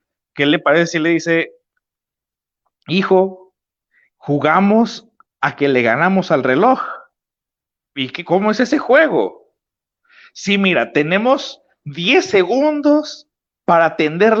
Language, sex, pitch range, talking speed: Spanish, male, 165-230 Hz, 115 wpm